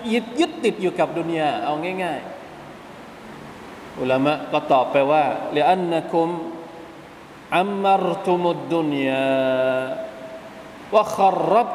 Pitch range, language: 145-175 Hz, Thai